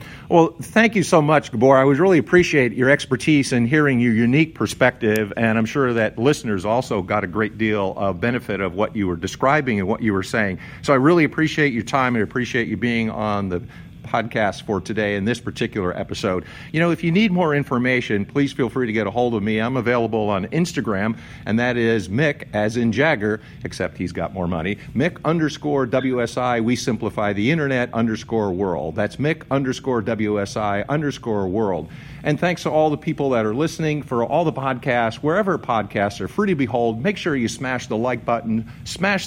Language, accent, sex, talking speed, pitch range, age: English, American, male, 200 wpm, 110-145 Hz, 50-69